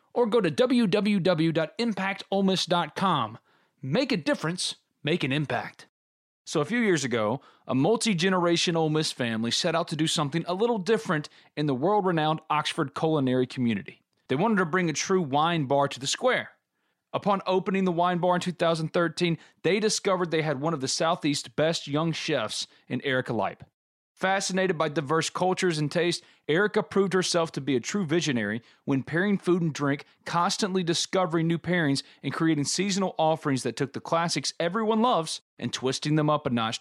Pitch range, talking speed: 140-190 Hz, 170 wpm